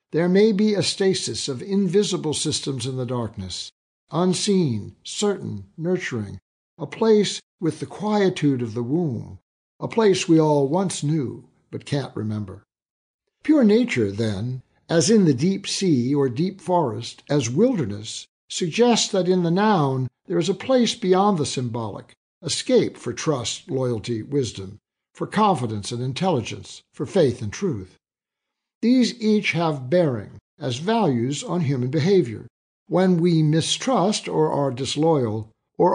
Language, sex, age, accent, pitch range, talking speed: English, male, 60-79, American, 120-185 Hz, 140 wpm